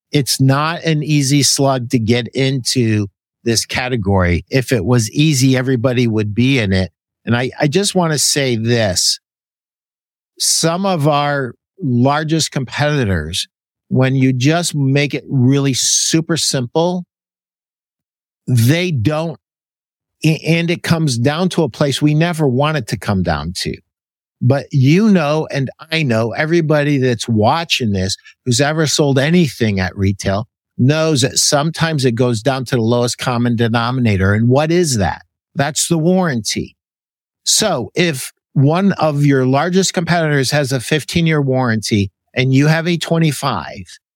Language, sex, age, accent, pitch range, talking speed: English, male, 50-69, American, 120-160 Hz, 145 wpm